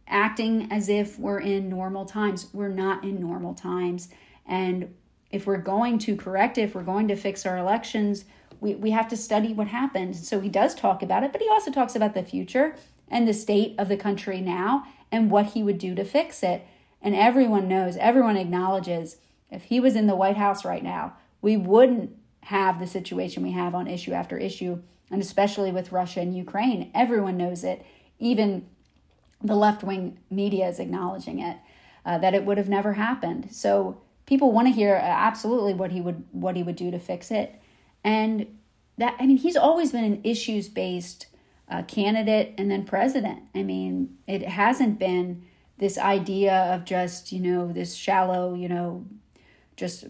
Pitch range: 180-220 Hz